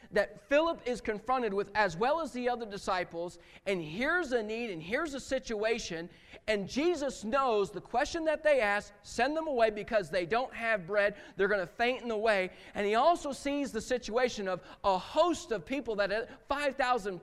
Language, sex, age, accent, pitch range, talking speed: English, male, 40-59, American, 205-265 Hz, 190 wpm